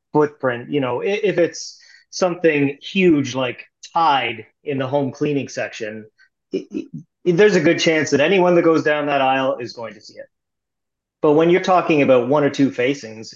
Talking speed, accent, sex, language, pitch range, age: 175 wpm, American, male, English, 130-165 Hz, 30-49